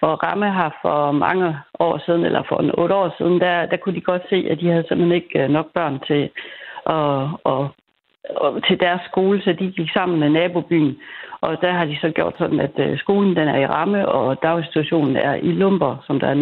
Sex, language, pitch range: female, Danish, 150-180 Hz